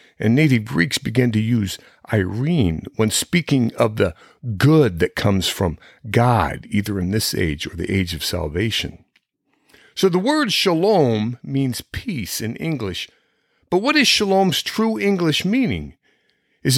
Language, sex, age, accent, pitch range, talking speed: English, male, 50-69, American, 110-165 Hz, 145 wpm